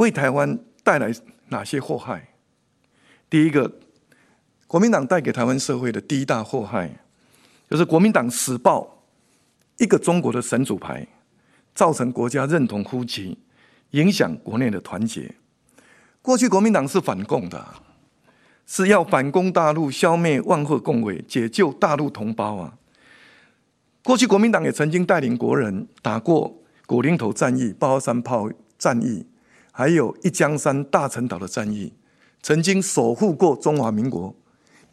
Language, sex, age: Chinese, male, 50-69